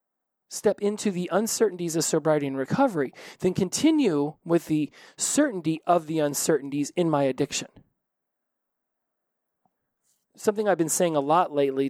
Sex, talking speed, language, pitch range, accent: male, 130 wpm, English, 145-175 Hz, American